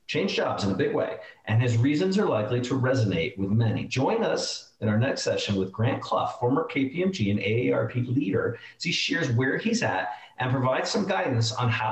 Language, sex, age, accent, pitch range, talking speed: English, male, 40-59, American, 110-130 Hz, 205 wpm